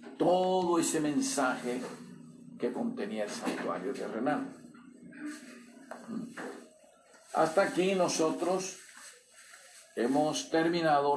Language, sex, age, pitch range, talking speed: Spanish, male, 50-69, 135-215 Hz, 75 wpm